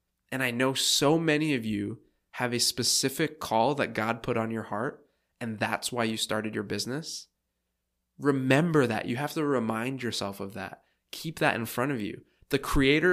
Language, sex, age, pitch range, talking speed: English, male, 20-39, 75-125 Hz, 185 wpm